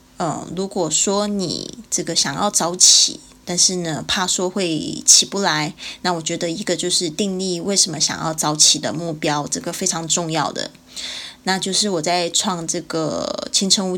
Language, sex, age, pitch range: Chinese, female, 20-39, 165-200 Hz